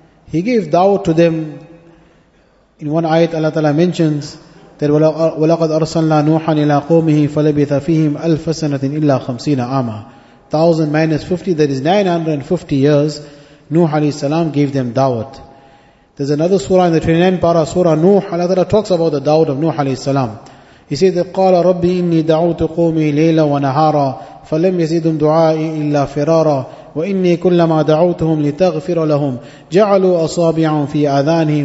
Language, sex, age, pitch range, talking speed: English, male, 30-49, 150-175 Hz, 115 wpm